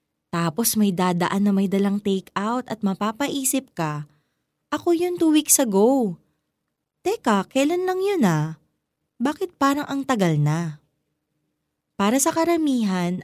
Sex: female